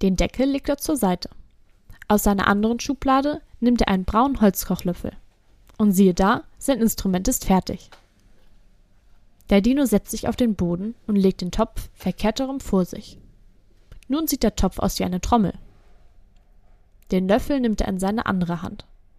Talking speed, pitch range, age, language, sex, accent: 165 wpm, 180-235 Hz, 10-29, German, female, German